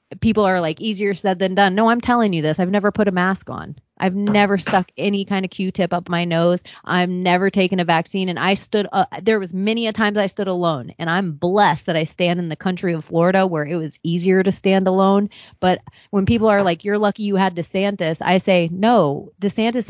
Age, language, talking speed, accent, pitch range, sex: 30-49, English, 235 wpm, American, 180-225 Hz, female